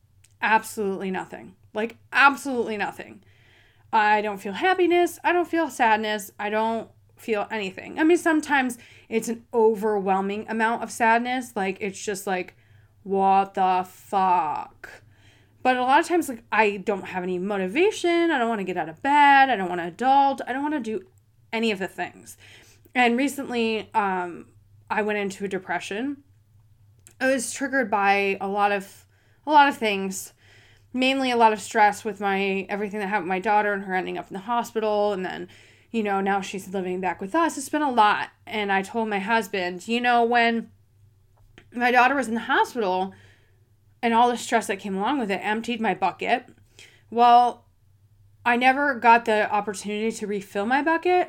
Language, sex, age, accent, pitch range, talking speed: English, female, 20-39, American, 185-240 Hz, 180 wpm